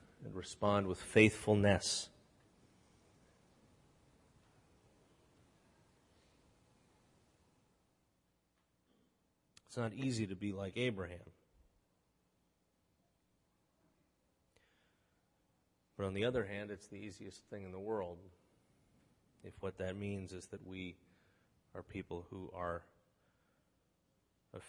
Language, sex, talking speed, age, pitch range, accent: English, male, 85 wpm, 40-59, 90-110 Hz, American